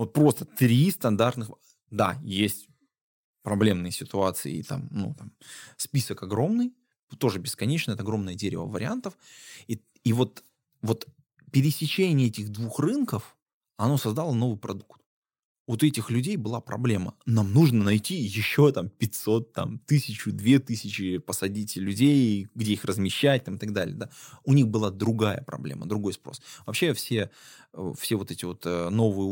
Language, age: Russian, 20-39